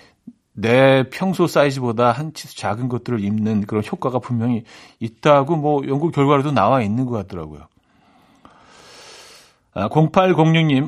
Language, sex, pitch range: Korean, male, 120-165 Hz